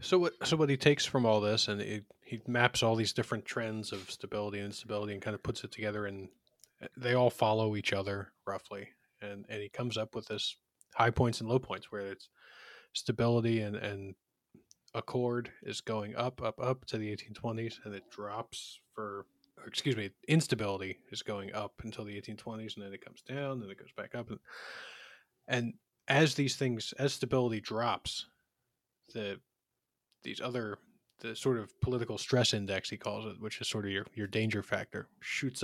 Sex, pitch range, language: male, 105-120 Hz, English